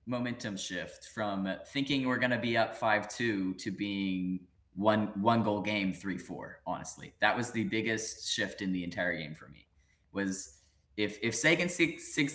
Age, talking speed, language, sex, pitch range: 20-39, 170 wpm, English, male, 90-115 Hz